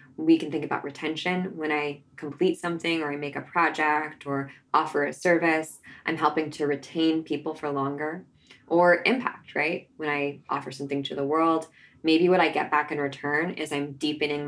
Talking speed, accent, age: 185 wpm, American, 20-39